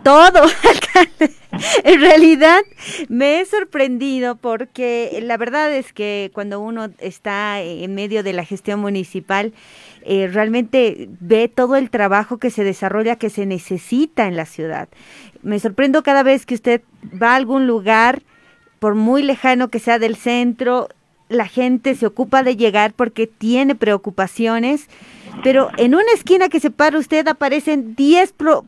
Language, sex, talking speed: Spanish, female, 150 wpm